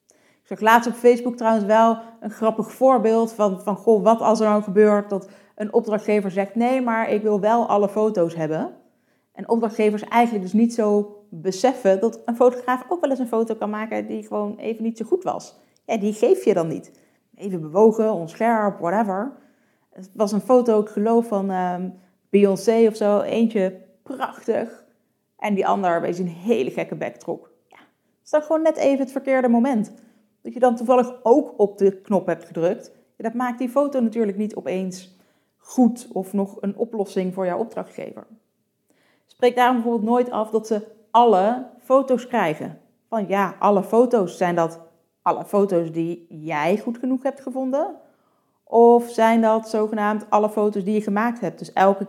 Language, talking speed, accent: Dutch, 175 wpm, Dutch